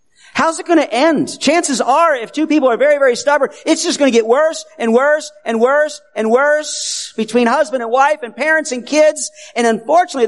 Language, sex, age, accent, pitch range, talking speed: English, male, 50-69, American, 195-295 Hz, 210 wpm